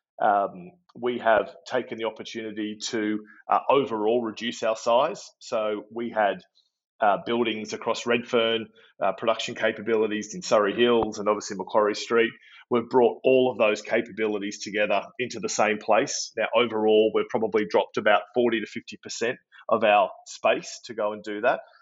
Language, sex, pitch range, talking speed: English, male, 105-115 Hz, 155 wpm